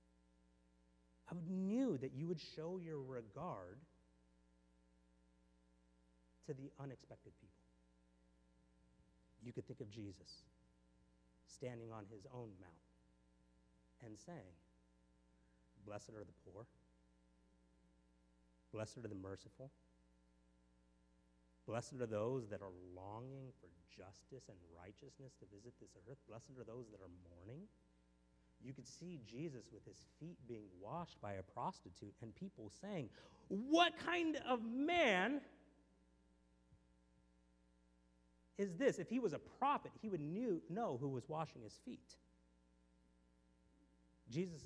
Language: English